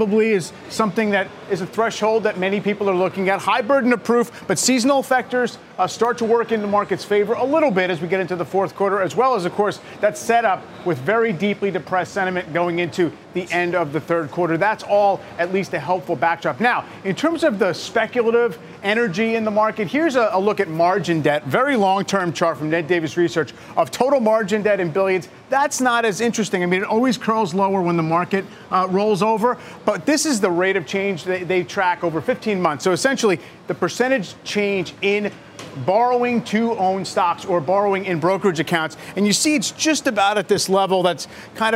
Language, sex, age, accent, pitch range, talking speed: English, male, 40-59, American, 175-215 Hz, 215 wpm